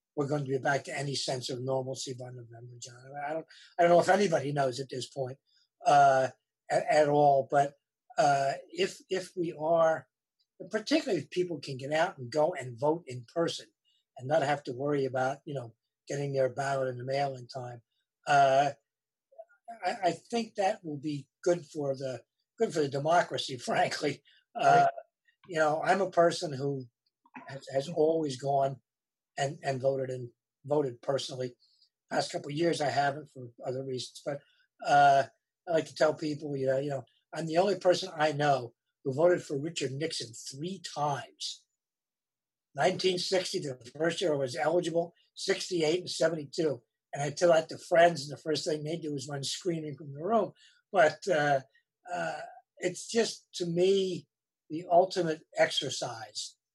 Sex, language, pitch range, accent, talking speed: male, English, 135-175 Hz, American, 175 wpm